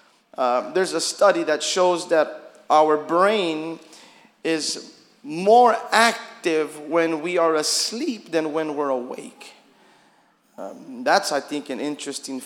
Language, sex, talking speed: English, male, 125 wpm